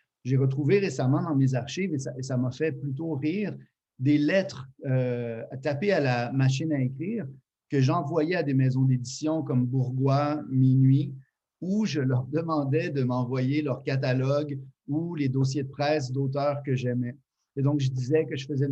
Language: French